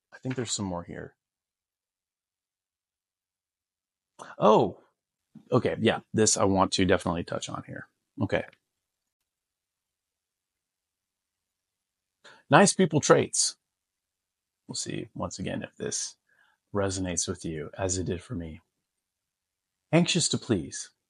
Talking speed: 110 wpm